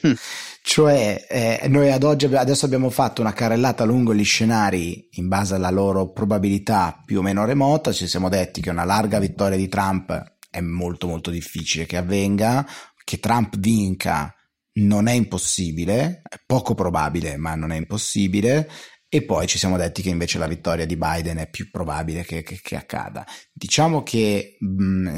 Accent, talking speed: native, 170 wpm